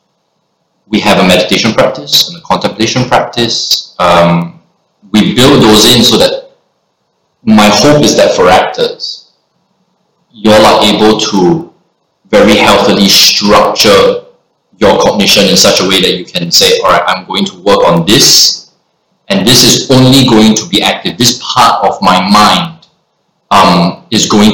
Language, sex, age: English, male, 20-39